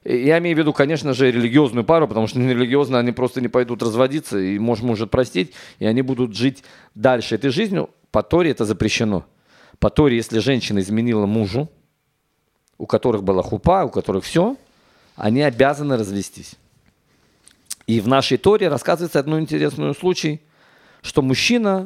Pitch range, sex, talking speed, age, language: 115-155 Hz, male, 155 wpm, 40-59, Russian